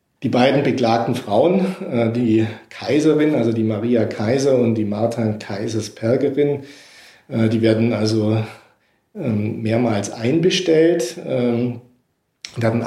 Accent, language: German, German